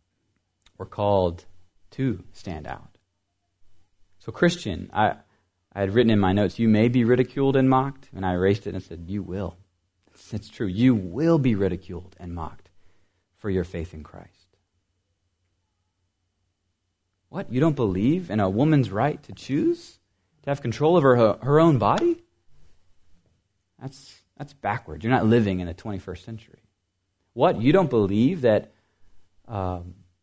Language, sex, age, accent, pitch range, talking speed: English, male, 30-49, American, 95-120 Hz, 155 wpm